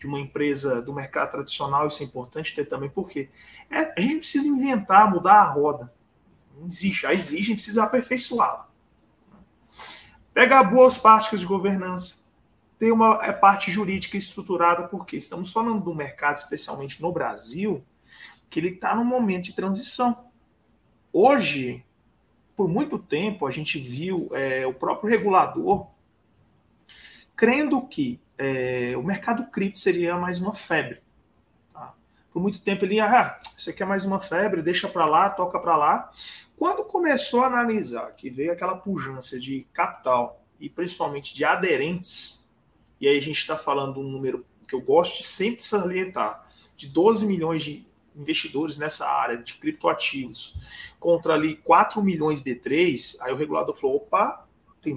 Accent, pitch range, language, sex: Brazilian, 150-225 Hz, Portuguese, male